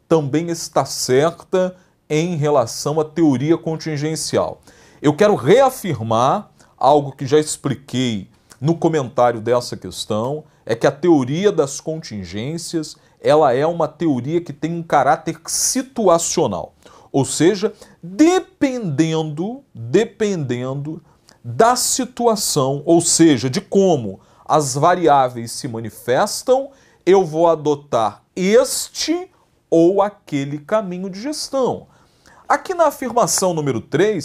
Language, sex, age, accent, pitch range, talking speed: English, male, 40-59, Brazilian, 130-185 Hz, 105 wpm